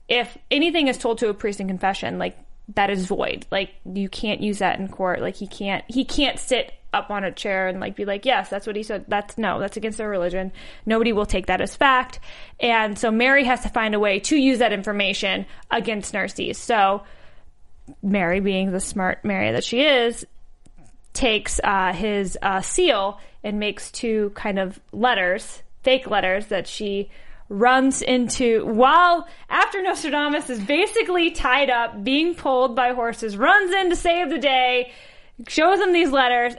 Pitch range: 200-270 Hz